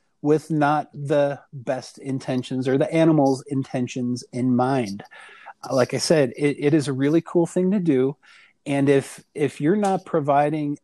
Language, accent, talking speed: English, American, 160 wpm